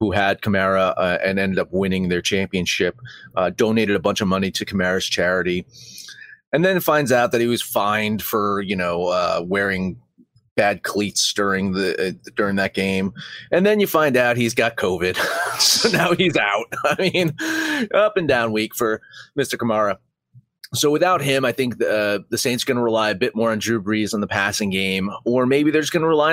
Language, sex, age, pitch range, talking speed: English, male, 30-49, 95-140 Hz, 205 wpm